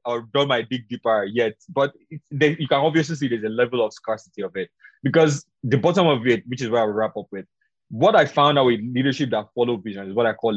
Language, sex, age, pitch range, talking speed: English, male, 20-39, 125-180 Hz, 255 wpm